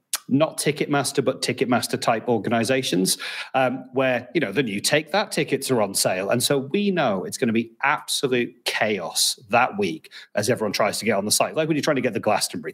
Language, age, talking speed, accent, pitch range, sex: English, 30-49, 210 wpm, British, 115-145 Hz, male